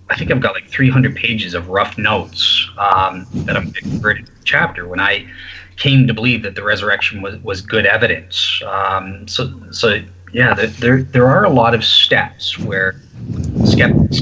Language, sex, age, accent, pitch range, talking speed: English, male, 20-39, American, 95-125 Hz, 180 wpm